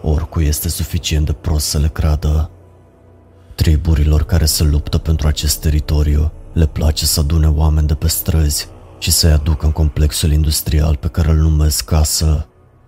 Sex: male